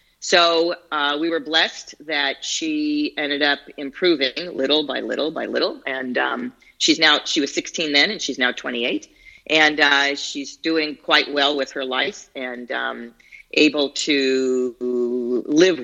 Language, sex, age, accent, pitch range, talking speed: English, female, 40-59, American, 130-155 Hz, 155 wpm